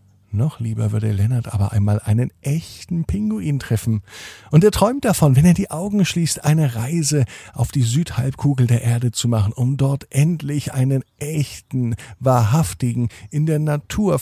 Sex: male